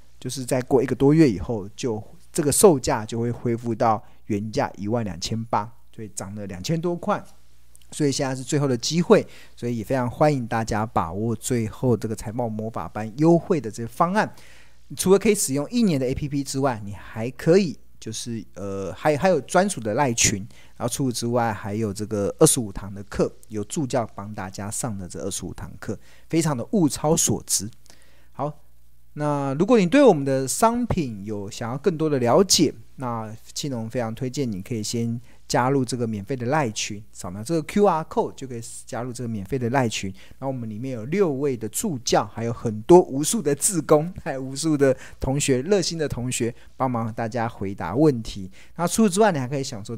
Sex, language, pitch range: male, Chinese, 110-150 Hz